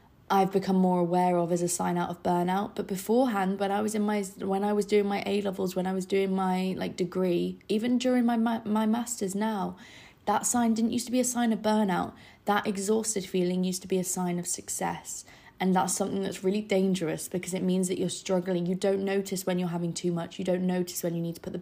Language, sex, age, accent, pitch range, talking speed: English, female, 20-39, British, 180-205 Hz, 245 wpm